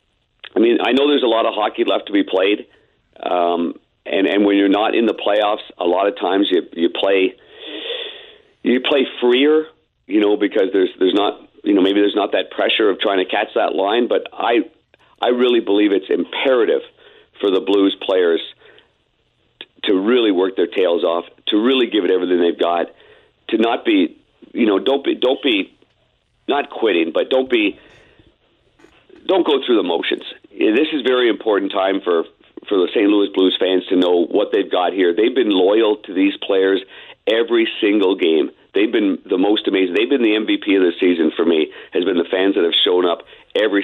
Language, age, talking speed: English, 50-69, 200 wpm